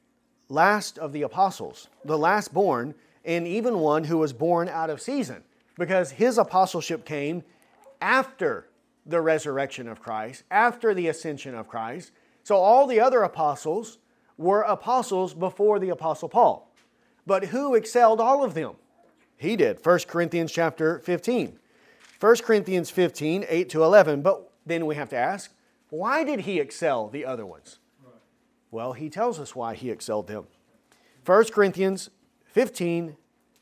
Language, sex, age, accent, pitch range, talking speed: English, male, 40-59, American, 160-220 Hz, 150 wpm